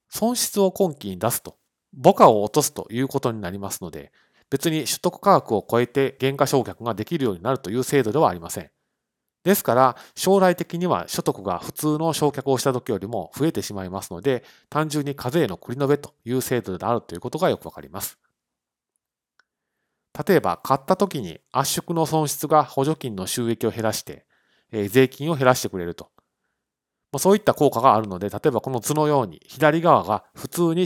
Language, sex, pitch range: Japanese, male, 110-155 Hz